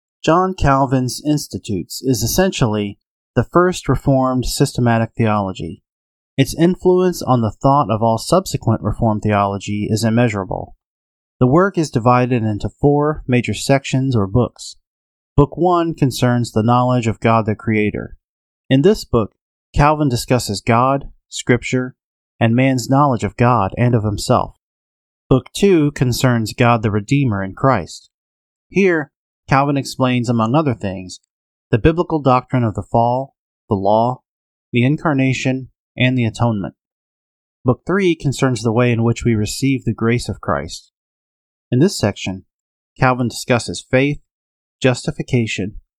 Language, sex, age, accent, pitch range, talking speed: English, male, 30-49, American, 105-135 Hz, 135 wpm